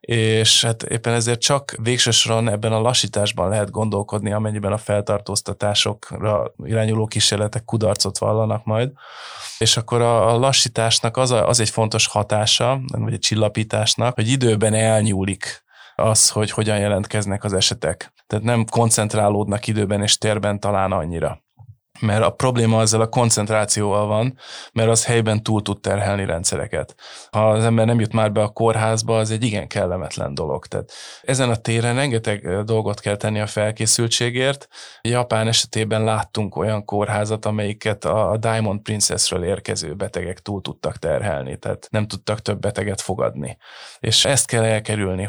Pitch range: 105-115 Hz